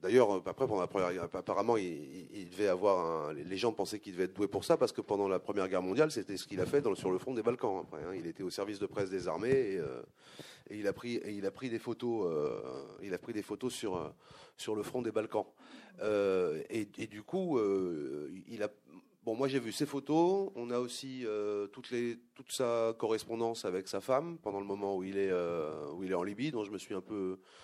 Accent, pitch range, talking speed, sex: French, 100-140 Hz, 260 wpm, male